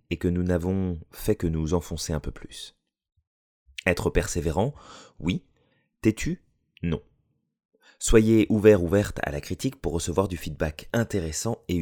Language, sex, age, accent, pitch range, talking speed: French, male, 30-49, French, 75-100 Hz, 140 wpm